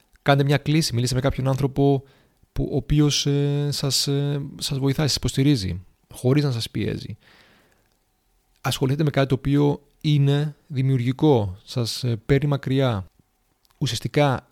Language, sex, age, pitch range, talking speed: Greek, male, 30-49, 115-145 Hz, 135 wpm